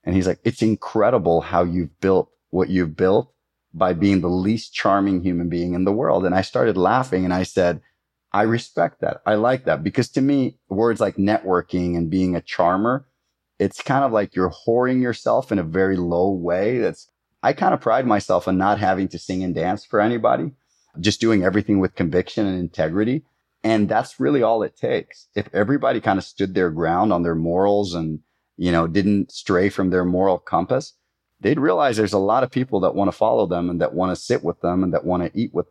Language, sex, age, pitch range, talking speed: English, male, 30-49, 90-105 Hz, 215 wpm